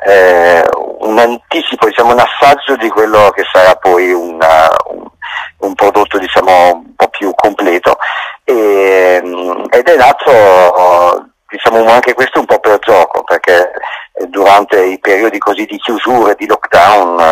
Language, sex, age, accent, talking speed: Italian, male, 50-69, native, 135 wpm